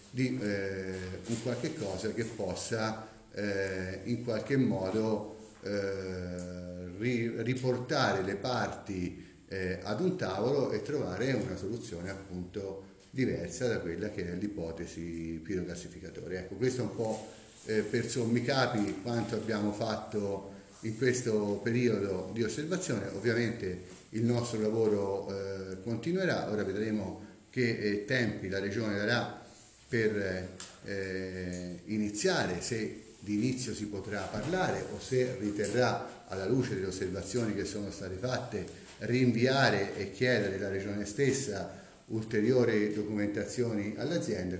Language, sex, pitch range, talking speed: Italian, male, 95-115 Hz, 120 wpm